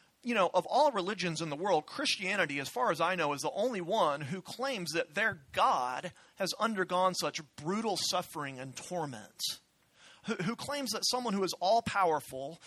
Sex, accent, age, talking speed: male, American, 40-59, 180 wpm